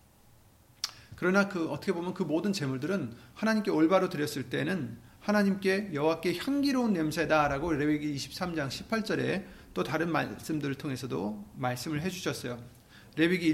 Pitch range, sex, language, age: 120-185 Hz, male, Korean, 40-59